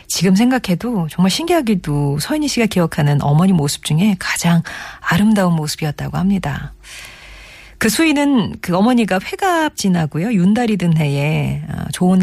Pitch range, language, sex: 155-220 Hz, Korean, female